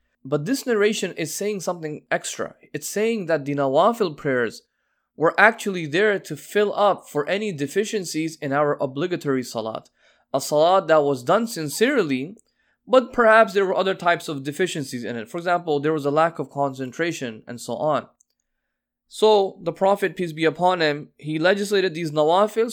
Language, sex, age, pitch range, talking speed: English, male, 20-39, 145-190 Hz, 170 wpm